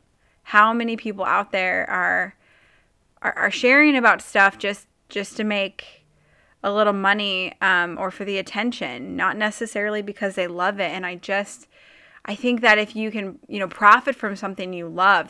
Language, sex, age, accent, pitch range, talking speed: English, female, 20-39, American, 185-215 Hz, 175 wpm